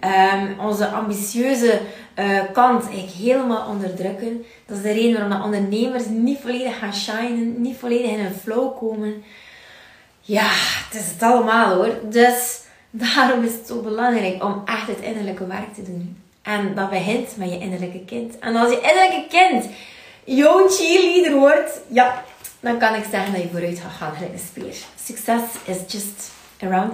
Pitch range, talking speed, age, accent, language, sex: 210-270 Hz, 165 wpm, 20-39, Dutch, Dutch, female